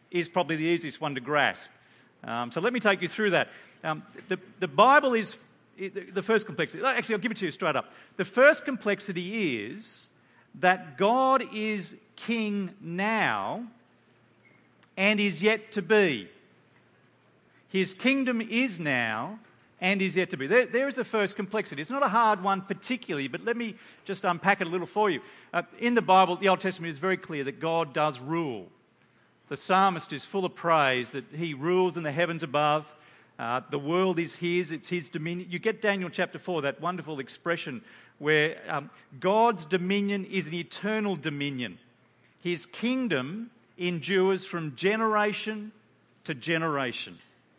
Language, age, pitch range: English, 40-59, 165-210 Hz